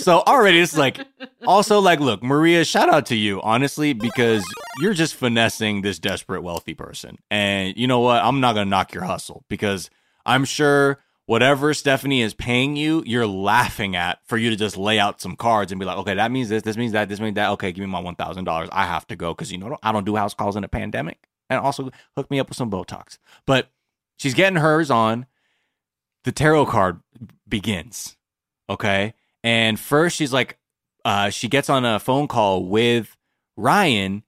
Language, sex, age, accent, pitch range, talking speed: English, male, 20-39, American, 105-140 Hz, 205 wpm